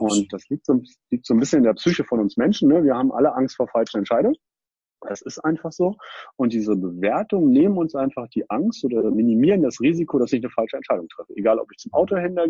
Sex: male